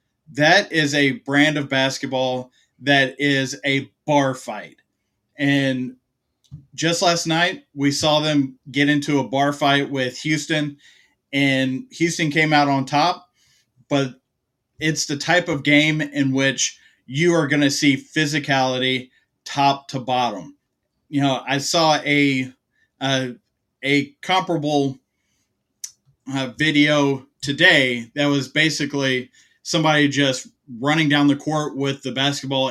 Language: English